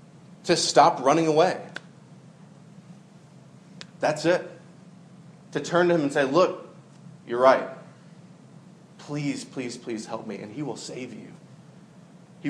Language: English